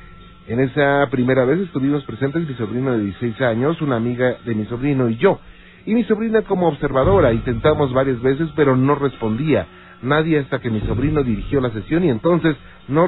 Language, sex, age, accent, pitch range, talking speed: Spanish, male, 40-59, Mexican, 105-145 Hz, 185 wpm